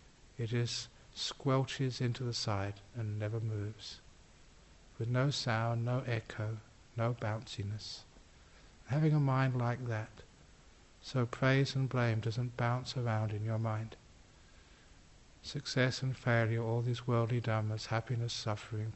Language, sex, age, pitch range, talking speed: English, male, 60-79, 110-130 Hz, 125 wpm